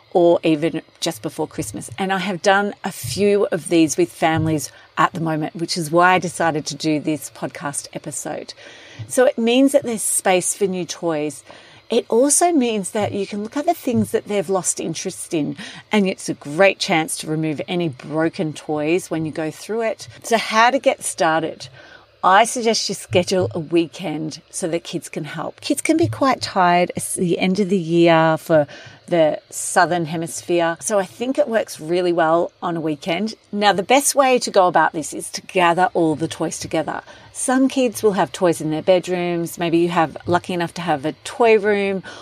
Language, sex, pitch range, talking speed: English, female, 160-205 Hz, 200 wpm